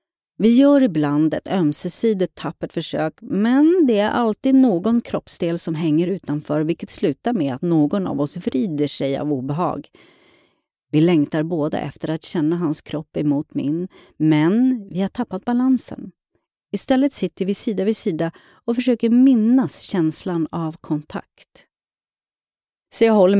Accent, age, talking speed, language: native, 40-59, 145 wpm, Swedish